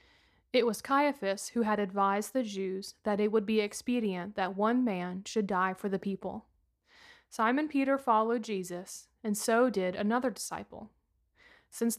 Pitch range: 195-235 Hz